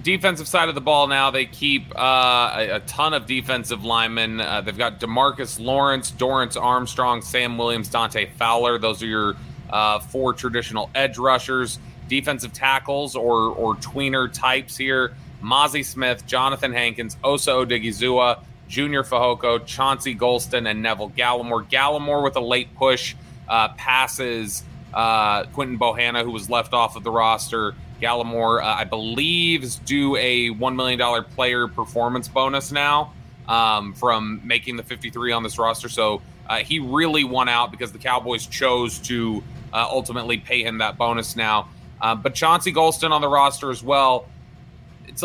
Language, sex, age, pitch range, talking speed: English, male, 30-49, 115-140 Hz, 160 wpm